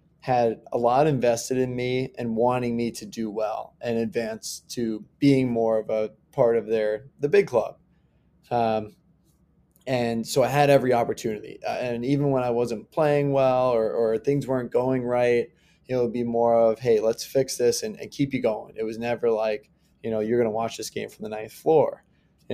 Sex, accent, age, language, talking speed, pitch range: male, American, 20-39, English, 210 wpm, 115-130 Hz